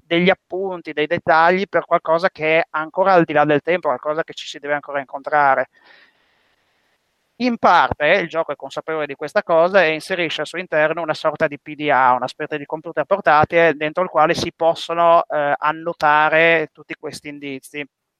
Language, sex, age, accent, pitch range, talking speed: Italian, male, 30-49, native, 145-175 Hz, 180 wpm